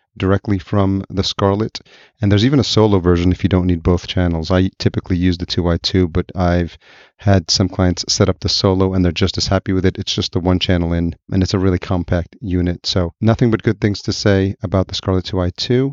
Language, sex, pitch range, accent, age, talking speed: English, male, 95-110 Hz, American, 30-49, 225 wpm